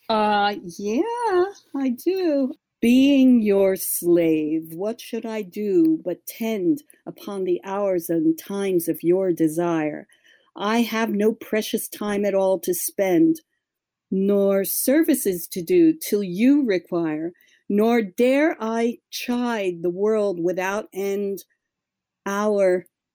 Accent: American